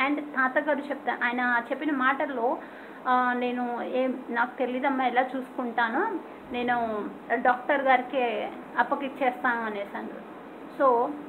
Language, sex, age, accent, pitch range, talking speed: Telugu, female, 20-39, native, 250-300 Hz, 100 wpm